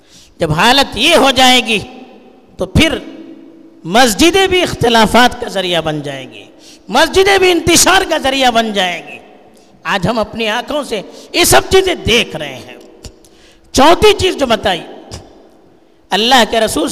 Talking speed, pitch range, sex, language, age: 150 wpm, 225-320 Hz, female, Urdu, 50-69